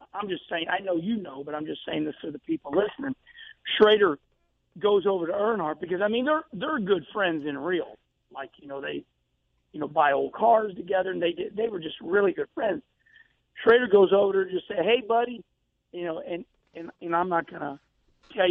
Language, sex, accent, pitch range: English, male, American, 160-225 Hz